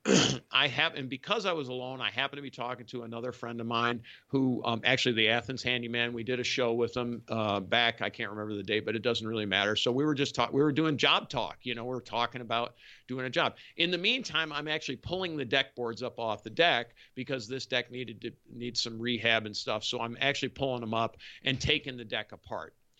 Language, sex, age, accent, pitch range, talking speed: English, male, 50-69, American, 115-140 Hz, 245 wpm